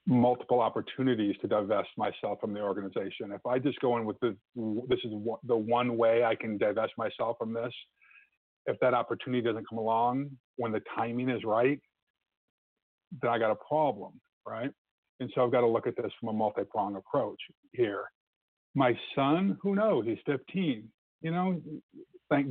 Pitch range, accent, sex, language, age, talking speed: 115-145 Hz, American, male, English, 50-69, 175 wpm